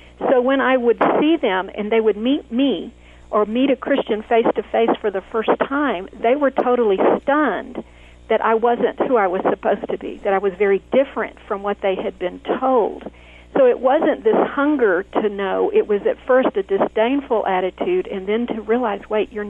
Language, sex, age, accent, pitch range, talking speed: English, female, 50-69, American, 195-255 Hz, 195 wpm